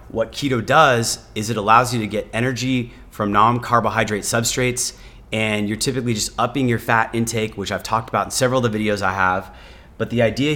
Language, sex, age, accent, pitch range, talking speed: English, male, 30-49, American, 105-125 Hz, 200 wpm